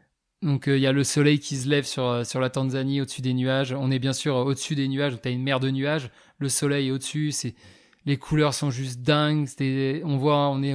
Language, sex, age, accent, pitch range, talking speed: French, male, 20-39, French, 135-155 Hz, 260 wpm